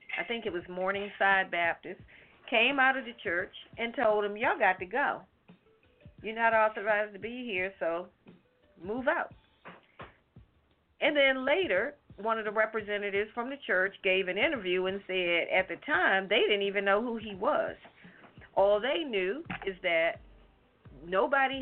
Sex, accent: female, American